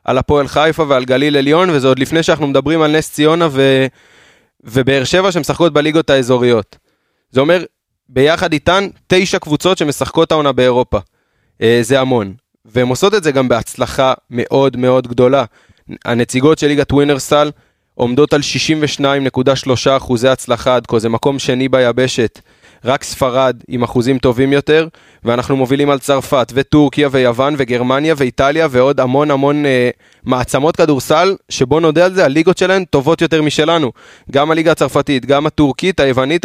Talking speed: 145 wpm